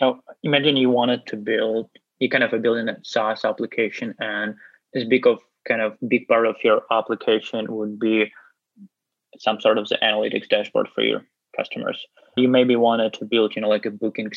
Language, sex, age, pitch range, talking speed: English, male, 20-39, 110-125 Hz, 195 wpm